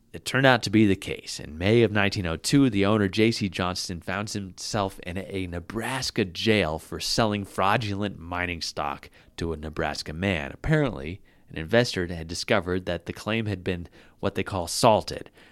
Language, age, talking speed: English, 30-49, 170 wpm